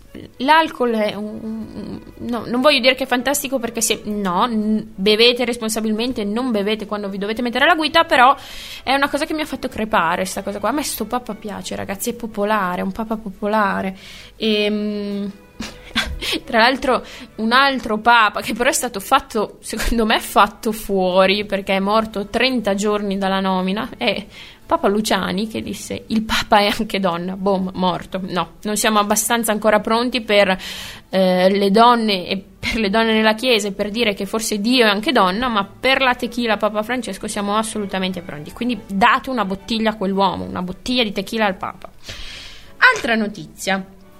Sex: female